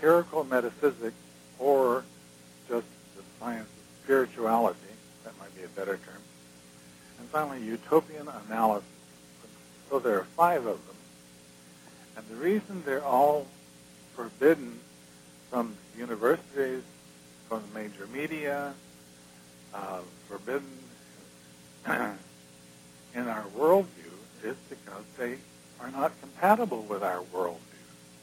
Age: 60-79